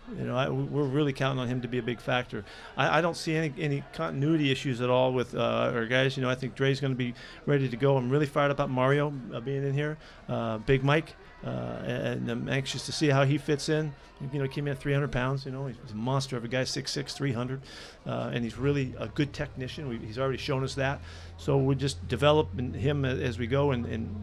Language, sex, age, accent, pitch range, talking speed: English, male, 40-59, American, 120-140 Hz, 250 wpm